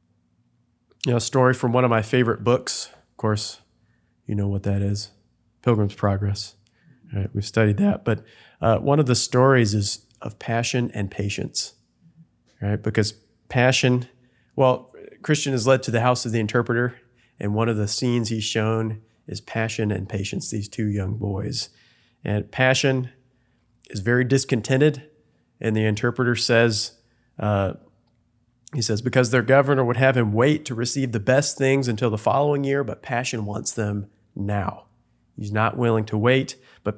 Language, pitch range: English, 110-130 Hz